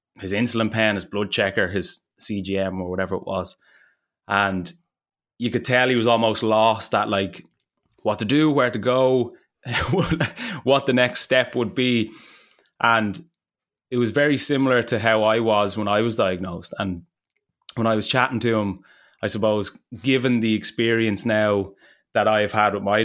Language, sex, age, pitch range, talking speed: English, male, 20-39, 105-125 Hz, 170 wpm